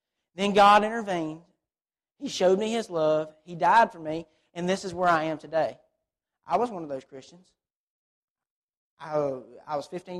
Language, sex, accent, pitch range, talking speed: English, male, American, 155-195 Hz, 170 wpm